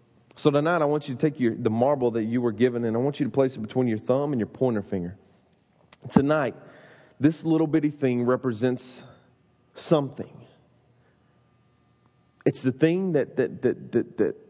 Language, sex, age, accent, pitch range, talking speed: English, male, 30-49, American, 120-155 Hz, 180 wpm